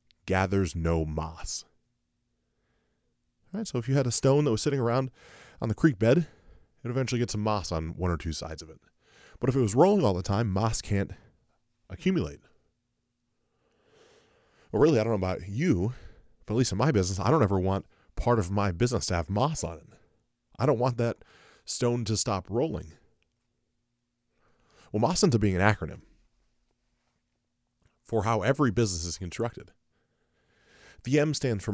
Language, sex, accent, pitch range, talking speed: English, male, American, 90-120 Hz, 175 wpm